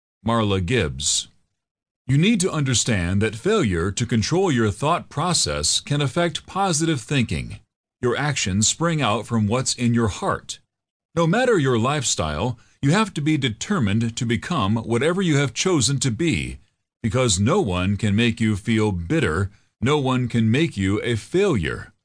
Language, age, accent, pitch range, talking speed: English, 40-59, American, 105-145 Hz, 160 wpm